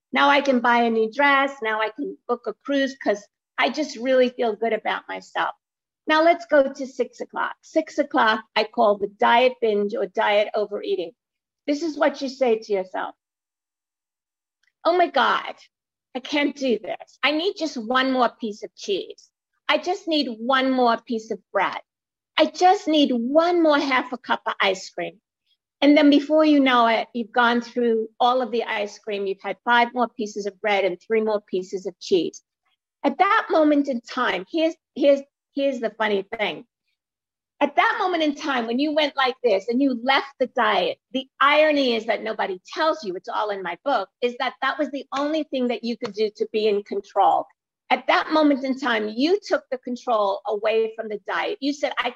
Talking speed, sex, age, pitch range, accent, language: 200 wpm, female, 50-69, 220-290 Hz, American, English